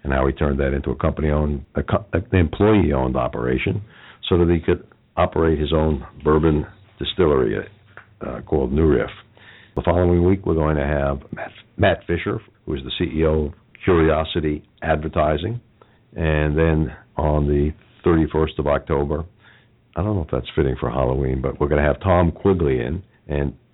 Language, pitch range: English, 70-85 Hz